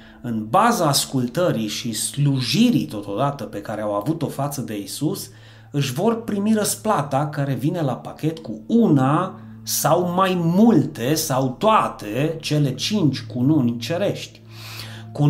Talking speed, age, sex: 130 wpm, 30-49, male